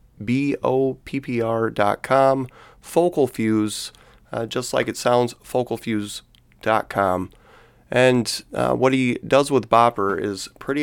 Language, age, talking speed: English, 30-49, 95 wpm